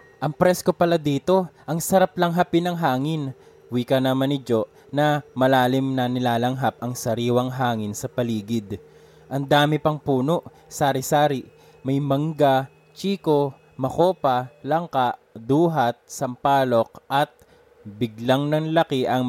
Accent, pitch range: Filipino, 120-160 Hz